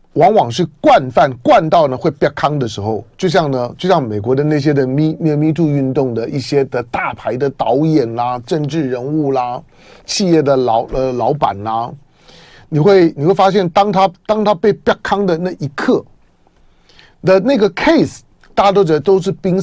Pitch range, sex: 135-190 Hz, male